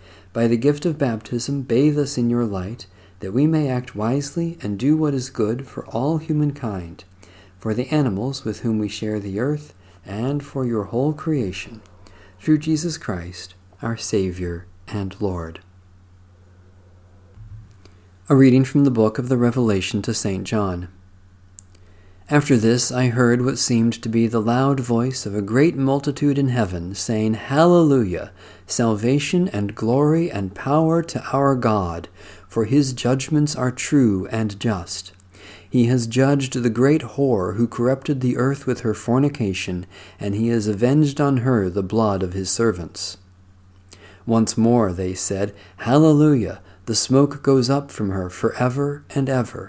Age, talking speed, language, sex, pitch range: 50-69, 155 wpm, English, male, 95-135 Hz